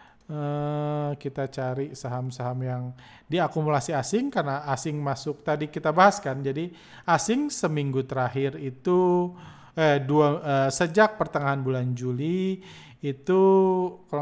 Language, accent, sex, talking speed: Indonesian, native, male, 115 wpm